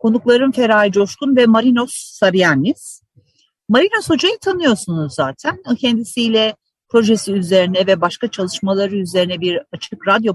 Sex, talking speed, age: female, 120 wpm, 50-69